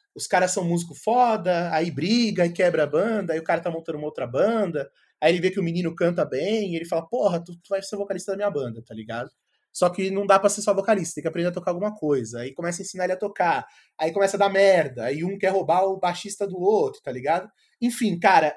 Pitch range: 145-195 Hz